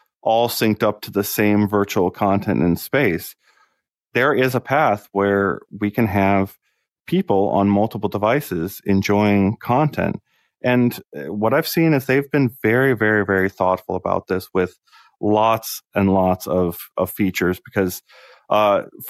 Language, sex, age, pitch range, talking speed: English, male, 30-49, 90-105 Hz, 145 wpm